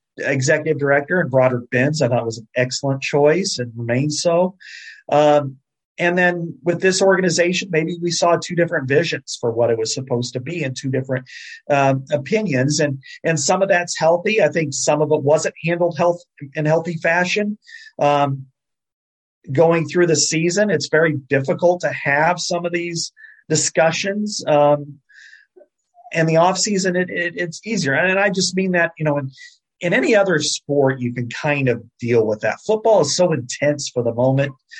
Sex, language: male, English